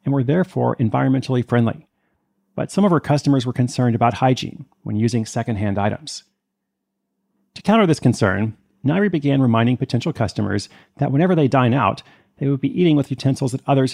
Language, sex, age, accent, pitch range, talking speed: English, male, 40-59, American, 120-150 Hz, 170 wpm